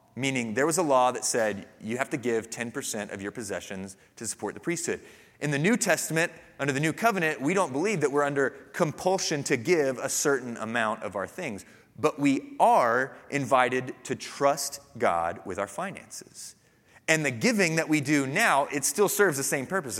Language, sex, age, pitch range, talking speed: English, male, 30-49, 130-165 Hz, 195 wpm